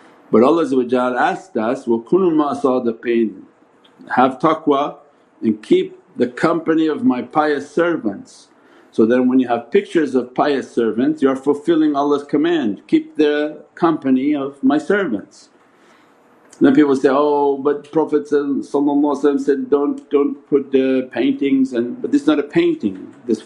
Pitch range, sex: 125-165 Hz, male